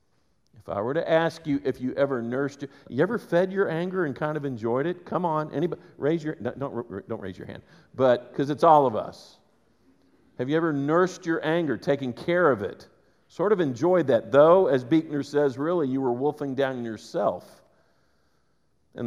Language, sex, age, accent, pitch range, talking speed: English, male, 50-69, American, 125-160 Hz, 195 wpm